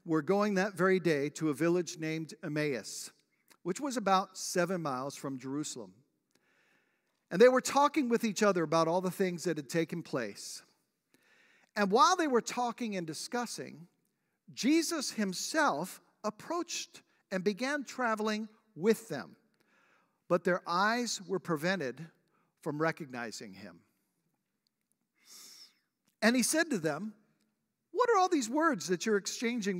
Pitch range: 165-245 Hz